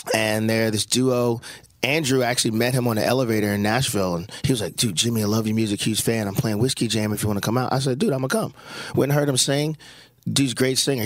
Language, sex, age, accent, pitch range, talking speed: English, male, 30-49, American, 110-130 Hz, 270 wpm